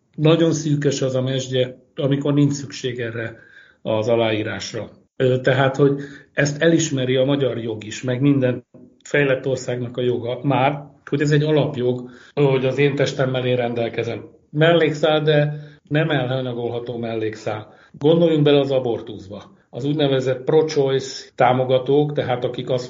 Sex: male